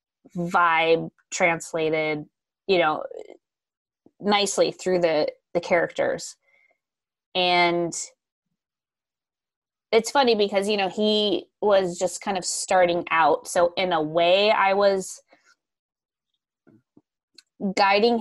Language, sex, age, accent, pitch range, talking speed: English, female, 20-39, American, 175-235 Hz, 95 wpm